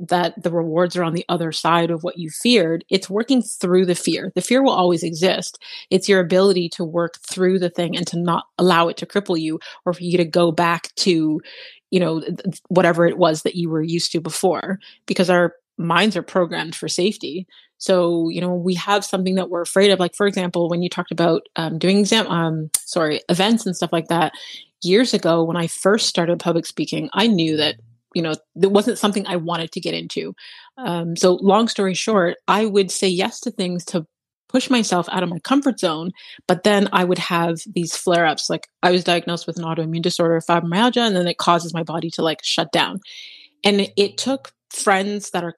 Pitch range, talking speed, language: 170-195 Hz, 215 wpm, English